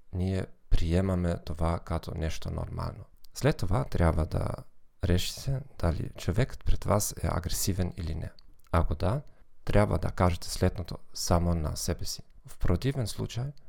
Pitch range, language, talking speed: 85-110 Hz, Bulgarian, 140 wpm